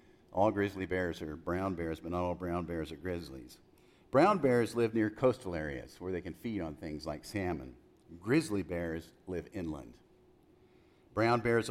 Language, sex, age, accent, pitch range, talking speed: English, male, 50-69, American, 90-115 Hz, 170 wpm